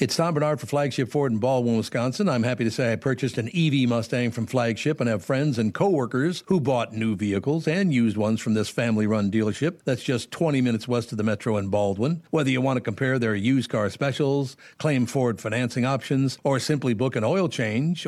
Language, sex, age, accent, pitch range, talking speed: English, male, 60-79, American, 115-145 Hz, 215 wpm